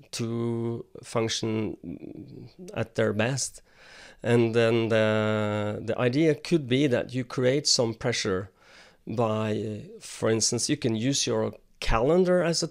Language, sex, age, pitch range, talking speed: English, male, 30-49, 115-140 Hz, 125 wpm